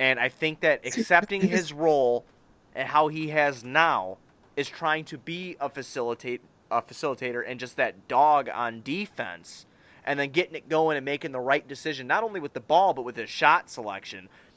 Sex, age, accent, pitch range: male, 30-49, American, 125-165 Hz